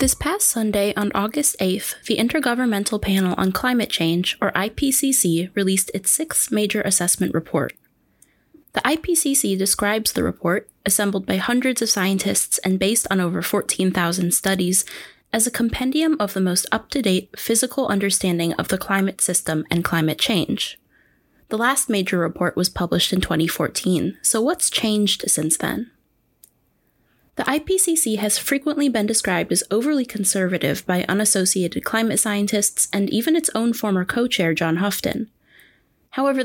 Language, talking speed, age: English, 145 wpm, 20-39